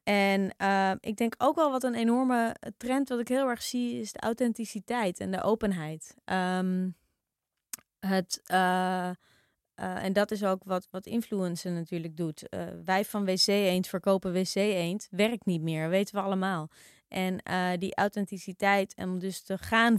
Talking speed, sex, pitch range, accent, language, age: 165 wpm, female, 175-210 Hz, Dutch, Dutch, 20-39